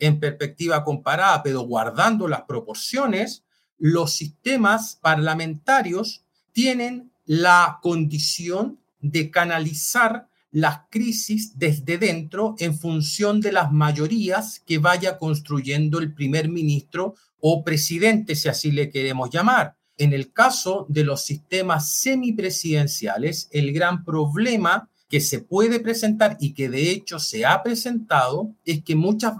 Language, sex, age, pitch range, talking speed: Spanish, male, 40-59, 150-210 Hz, 125 wpm